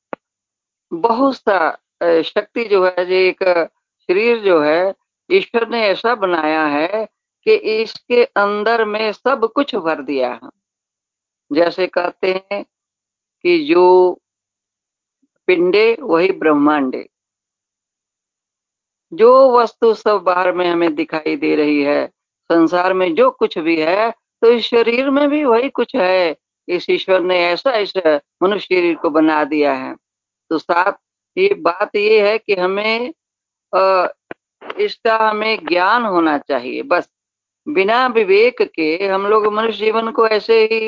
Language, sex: Hindi, female